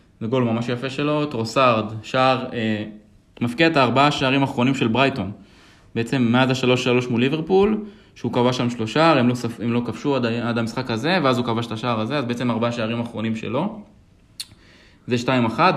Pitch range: 110-140 Hz